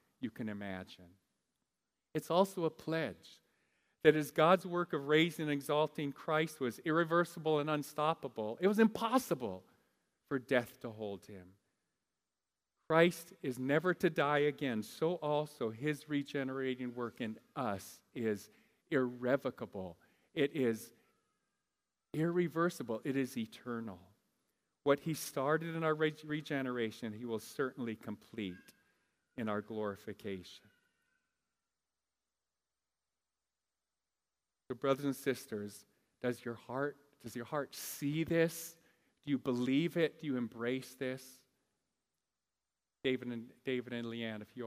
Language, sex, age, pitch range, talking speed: English, male, 50-69, 110-150 Hz, 120 wpm